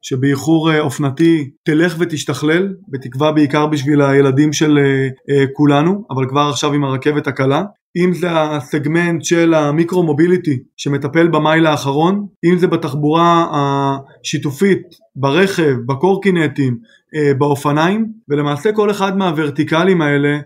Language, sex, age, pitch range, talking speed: Hebrew, male, 20-39, 145-170 Hz, 110 wpm